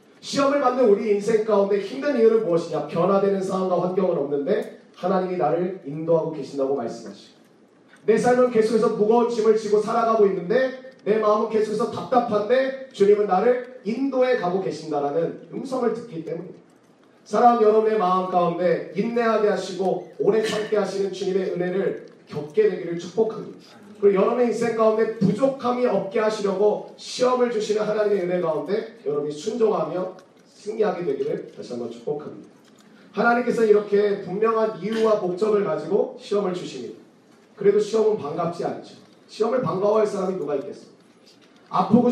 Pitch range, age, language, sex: 185-230 Hz, 30-49, Korean, male